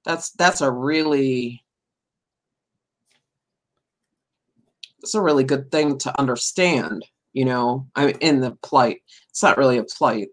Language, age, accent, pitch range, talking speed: English, 40-59, American, 125-155 Hz, 135 wpm